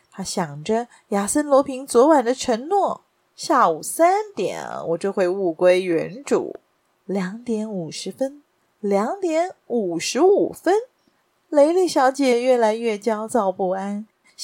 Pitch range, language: 190-265 Hz, Chinese